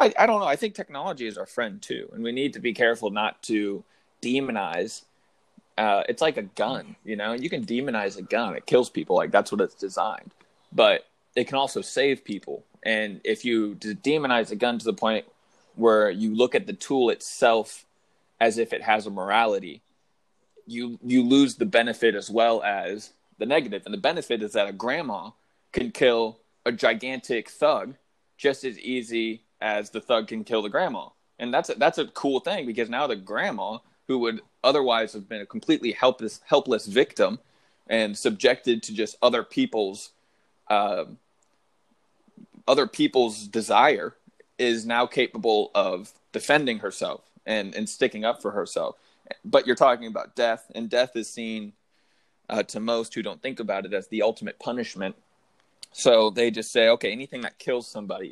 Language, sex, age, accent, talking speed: English, male, 20-39, American, 180 wpm